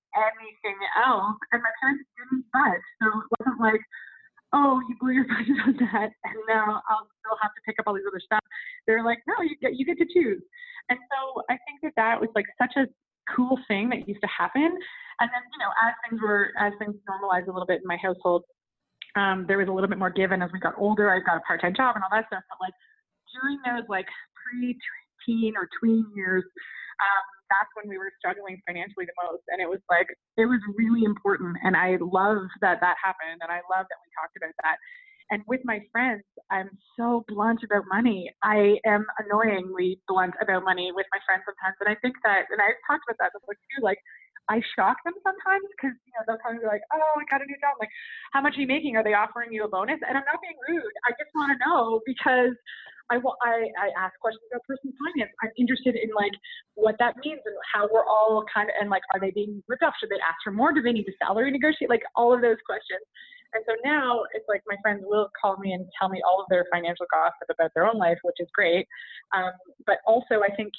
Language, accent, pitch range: English, American, 195-255 Hz